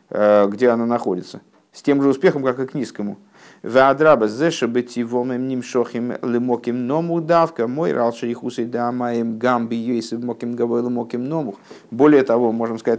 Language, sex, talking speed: Russian, male, 70 wpm